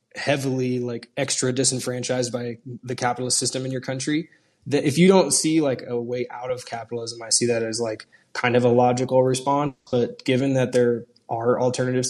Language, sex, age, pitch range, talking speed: English, male, 20-39, 115-130 Hz, 190 wpm